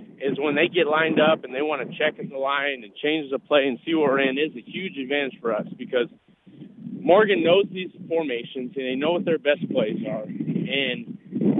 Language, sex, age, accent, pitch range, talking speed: English, male, 40-59, American, 135-200 Hz, 220 wpm